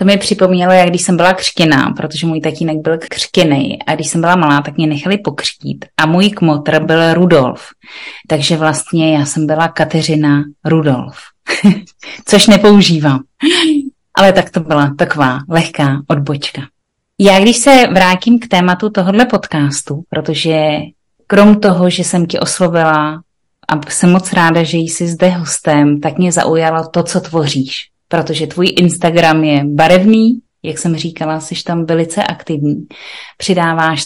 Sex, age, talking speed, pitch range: female, 30-49, 150 wpm, 155-185 Hz